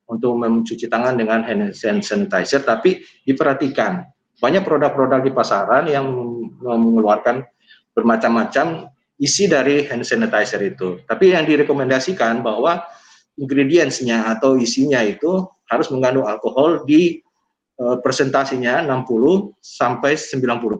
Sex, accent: male, native